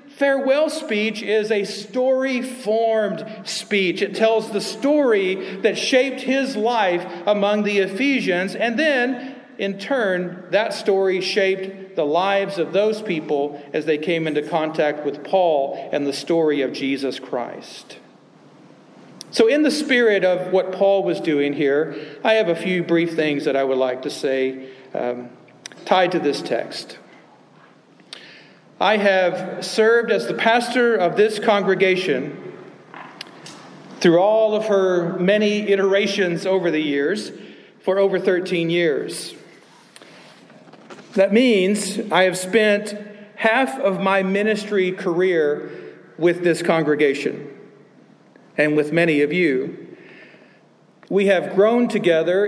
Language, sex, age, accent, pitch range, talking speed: English, male, 50-69, American, 170-220 Hz, 130 wpm